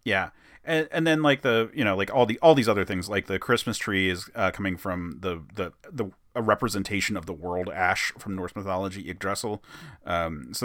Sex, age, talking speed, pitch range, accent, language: male, 30-49, 215 wpm, 95-150 Hz, American, English